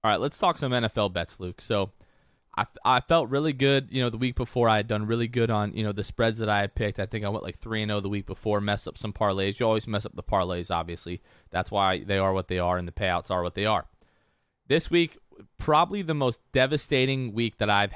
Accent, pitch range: American, 100-125 Hz